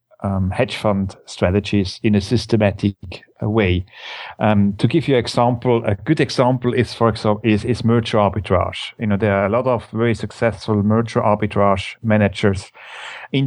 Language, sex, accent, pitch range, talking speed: English, male, German, 100-120 Hz, 165 wpm